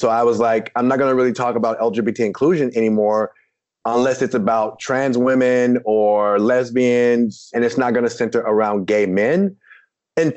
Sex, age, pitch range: male, 30-49, 110-135 Hz